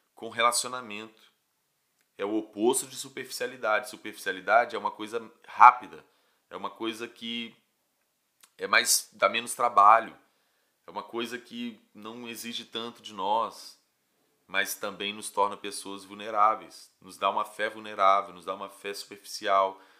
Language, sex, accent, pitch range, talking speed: Portuguese, male, Brazilian, 95-120 Hz, 130 wpm